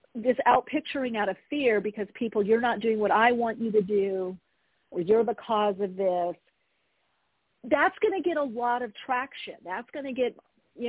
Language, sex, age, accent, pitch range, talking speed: English, female, 50-69, American, 200-265 Hz, 195 wpm